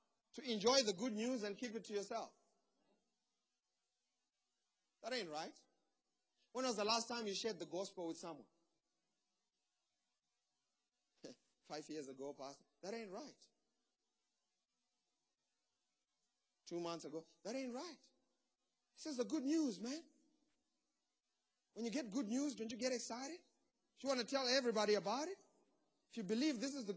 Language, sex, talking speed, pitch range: English, male, 145 wpm, 195-280 Hz